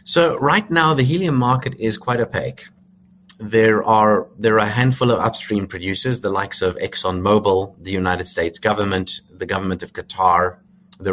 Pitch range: 90-125 Hz